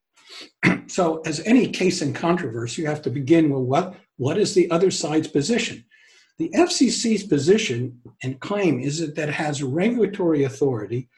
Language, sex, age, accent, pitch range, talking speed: English, male, 60-79, American, 145-200 Hz, 155 wpm